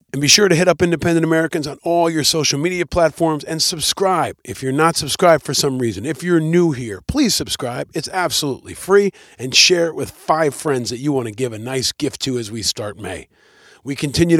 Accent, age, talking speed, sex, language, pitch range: American, 40-59, 220 wpm, male, English, 135-170 Hz